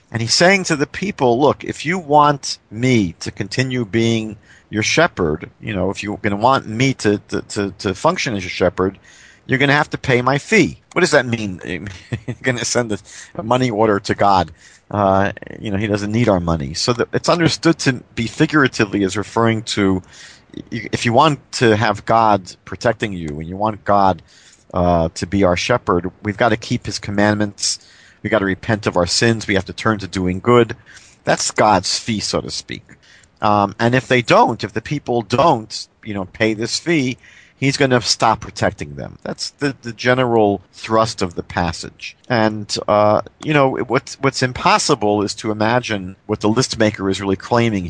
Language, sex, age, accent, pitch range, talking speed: English, male, 50-69, American, 100-125 Hz, 200 wpm